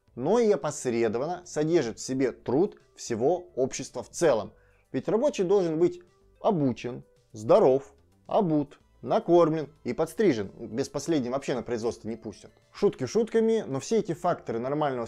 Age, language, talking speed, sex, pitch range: 20-39, Russian, 140 wpm, male, 125-190 Hz